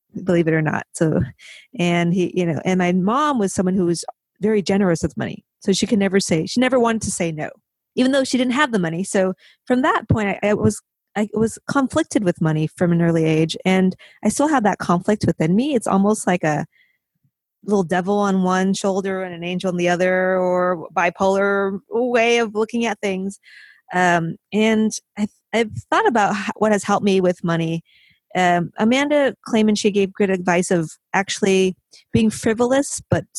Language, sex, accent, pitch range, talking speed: English, female, American, 175-215 Hz, 195 wpm